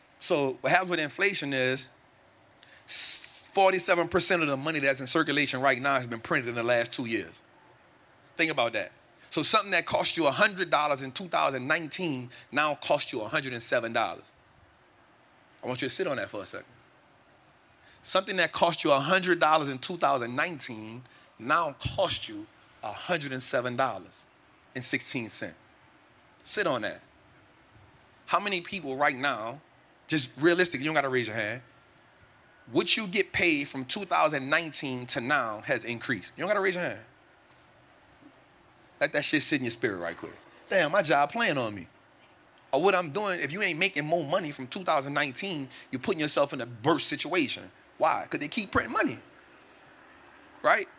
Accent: American